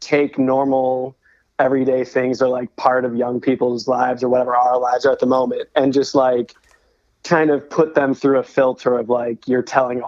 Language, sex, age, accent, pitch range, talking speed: English, male, 20-39, American, 120-135 Hz, 200 wpm